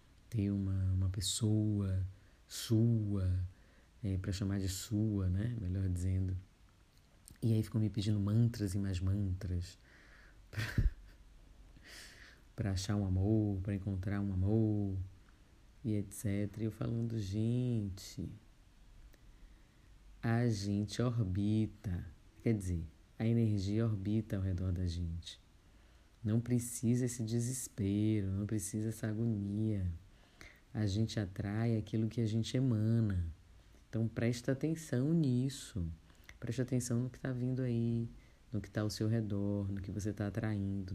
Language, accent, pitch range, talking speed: Portuguese, Brazilian, 95-115 Hz, 125 wpm